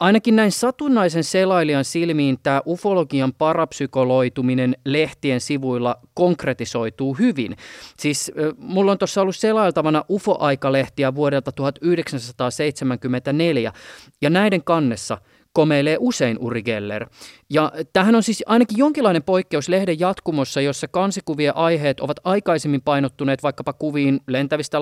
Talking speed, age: 110 wpm, 30-49